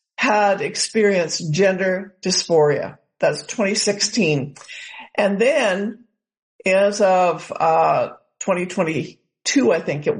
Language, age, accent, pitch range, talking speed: English, 60-79, American, 165-210 Hz, 90 wpm